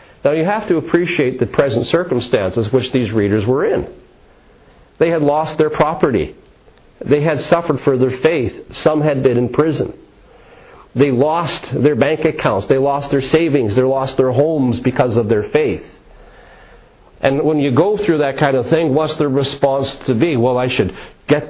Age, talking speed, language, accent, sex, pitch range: 50-69, 180 wpm, English, American, male, 115-145 Hz